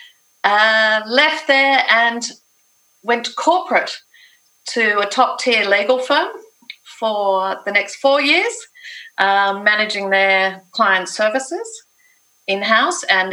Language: English